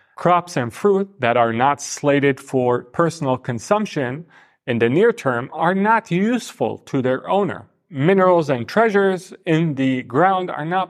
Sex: male